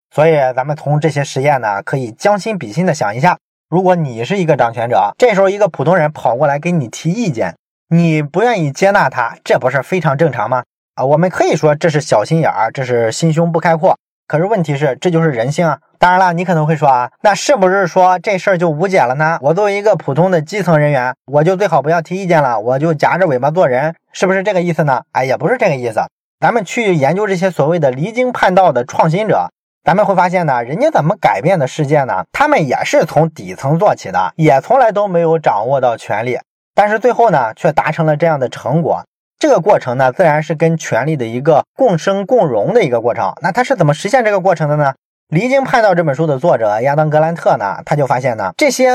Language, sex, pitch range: Chinese, male, 140-190 Hz